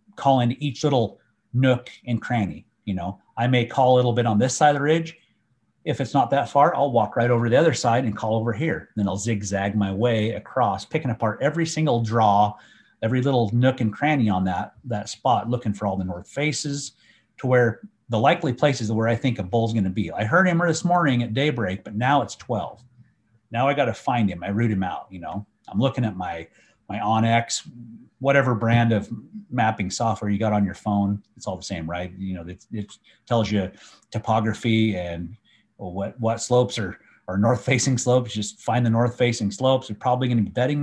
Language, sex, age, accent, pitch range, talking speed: English, male, 30-49, American, 105-125 Hz, 210 wpm